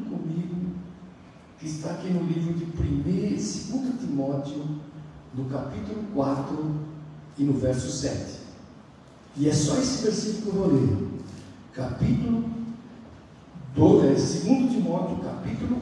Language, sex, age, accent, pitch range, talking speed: Portuguese, male, 60-79, Brazilian, 130-185 Hz, 120 wpm